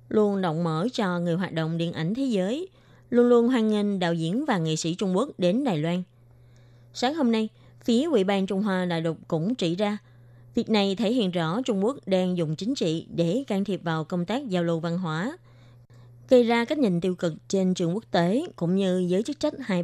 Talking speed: 225 wpm